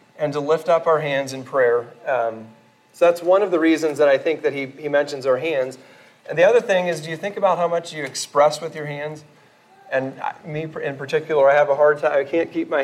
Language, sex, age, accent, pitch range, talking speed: English, male, 40-59, American, 135-175 Hz, 250 wpm